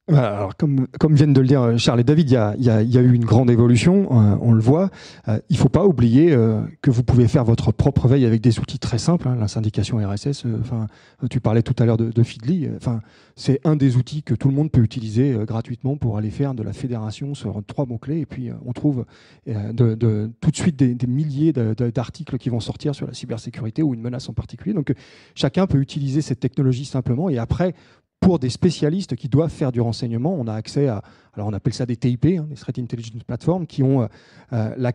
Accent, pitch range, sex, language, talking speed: French, 120-150 Hz, male, French, 230 wpm